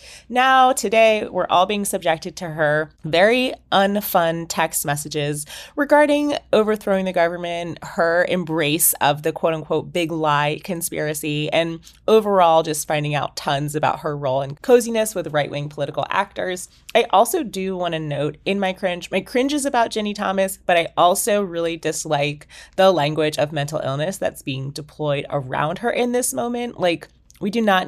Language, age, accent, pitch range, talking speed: English, 30-49, American, 150-205 Hz, 165 wpm